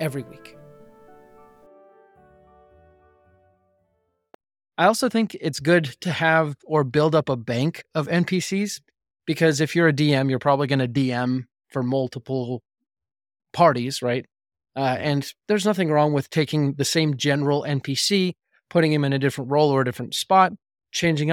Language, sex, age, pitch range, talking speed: English, male, 20-39, 125-165 Hz, 145 wpm